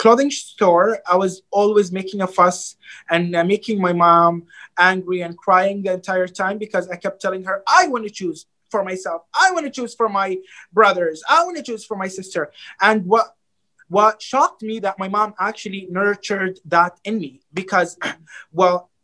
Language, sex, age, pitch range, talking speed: English, male, 20-39, 170-215 Hz, 185 wpm